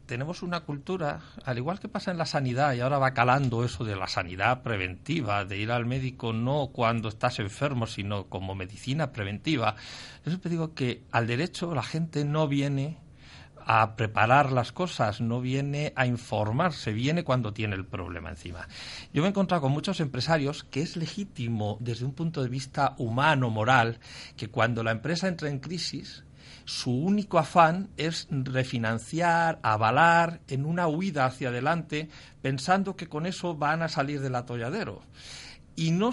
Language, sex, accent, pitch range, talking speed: Spanish, male, Spanish, 115-160 Hz, 170 wpm